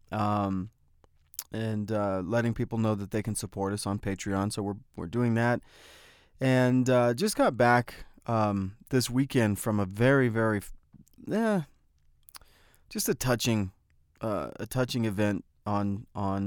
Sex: male